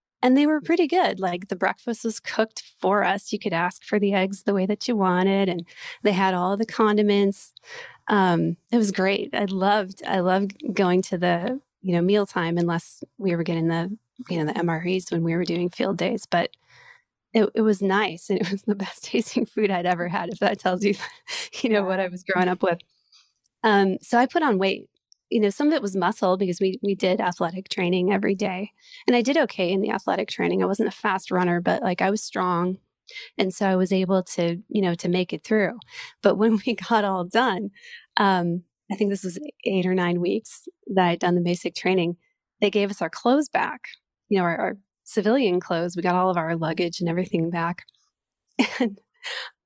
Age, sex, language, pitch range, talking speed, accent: 20-39, female, English, 180-215 Hz, 220 wpm, American